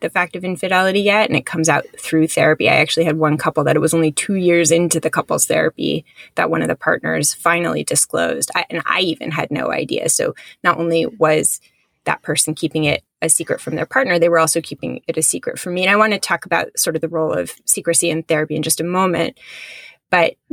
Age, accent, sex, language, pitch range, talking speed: 20-39, American, female, English, 160-190 Hz, 235 wpm